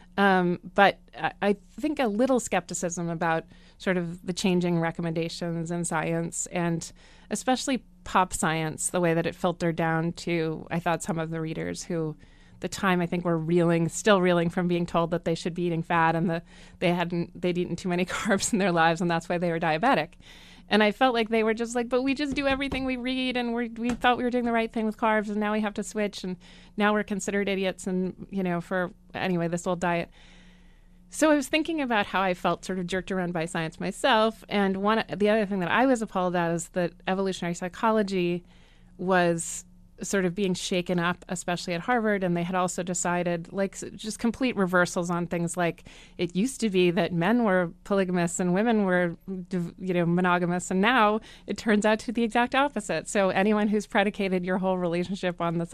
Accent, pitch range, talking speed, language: American, 175-210 Hz, 215 wpm, English